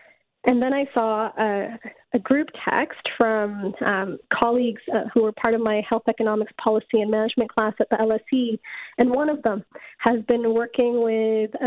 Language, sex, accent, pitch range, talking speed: English, female, American, 230-270 Hz, 175 wpm